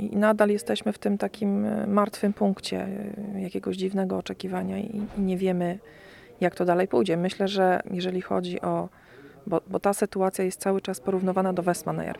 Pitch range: 180-225 Hz